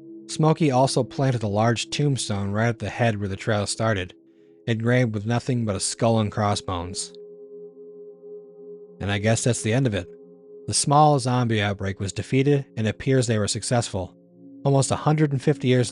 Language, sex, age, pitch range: English, male, 40-59, 105-135 Hz